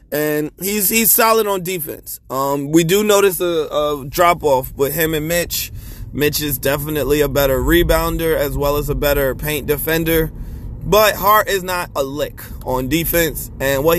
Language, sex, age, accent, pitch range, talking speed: English, male, 20-39, American, 135-175 Hz, 175 wpm